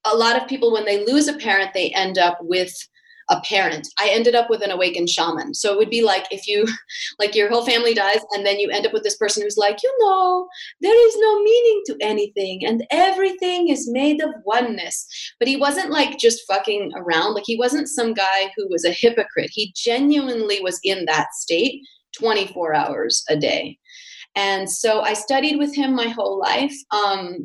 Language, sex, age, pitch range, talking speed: English, female, 30-49, 180-270 Hz, 205 wpm